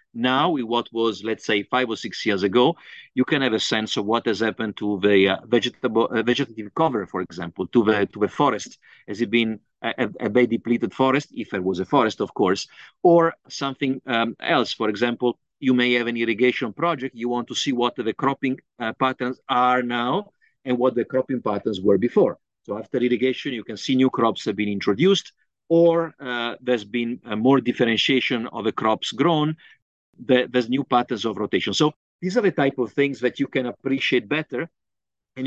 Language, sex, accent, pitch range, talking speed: English, male, Italian, 110-135 Hz, 205 wpm